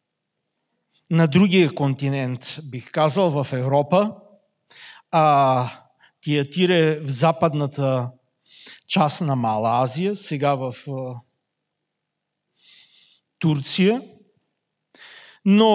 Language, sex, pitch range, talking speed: Bulgarian, male, 150-195 Hz, 70 wpm